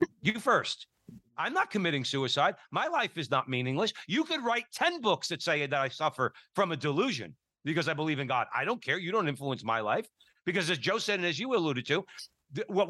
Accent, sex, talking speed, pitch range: American, male, 220 wpm, 135-195 Hz